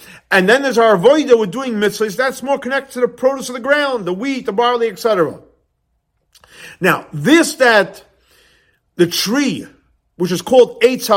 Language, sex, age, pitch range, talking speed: English, male, 50-69, 195-255 Hz, 165 wpm